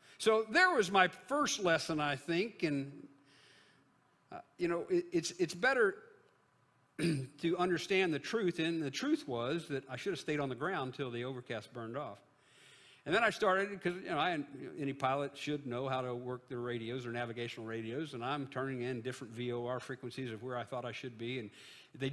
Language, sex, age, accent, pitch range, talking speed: English, male, 50-69, American, 125-160 Hz, 200 wpm